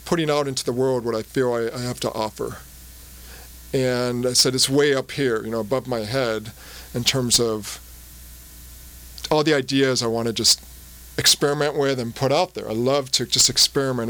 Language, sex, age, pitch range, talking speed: English, male, 40-59, 110-145 Hz, 195 wpm